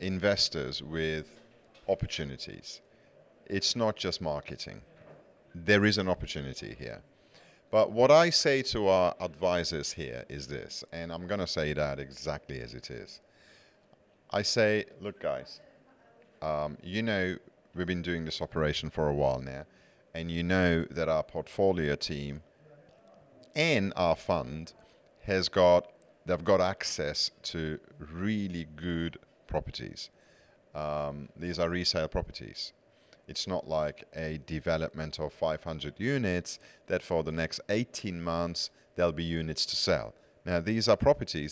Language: English